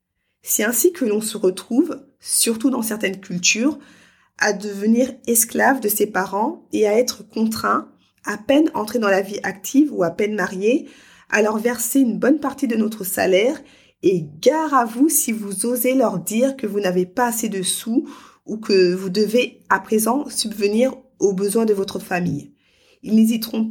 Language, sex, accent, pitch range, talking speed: French, female, French, 195-255 Hz, 175 wpm